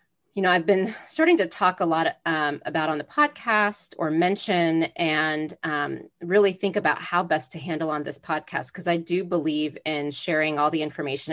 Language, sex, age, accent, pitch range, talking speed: English, female, 30-49, American, 155-195 Hz, 195 wpm